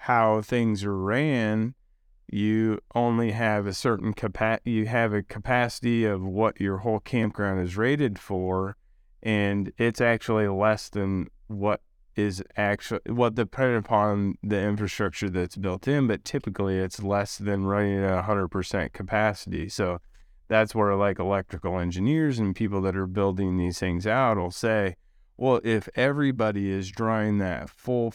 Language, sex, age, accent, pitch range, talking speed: English, male, 30-49, American, 95-115 Hz, 150 wpm